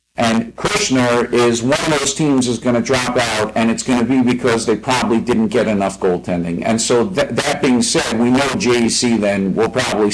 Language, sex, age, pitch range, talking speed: English, male, 50-69, 110-130 Hz, 215 wpm